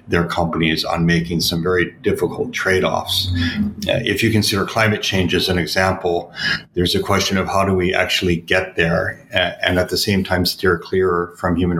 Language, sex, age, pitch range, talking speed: English, male, 40-59, 85-90 Hz, 185 wpm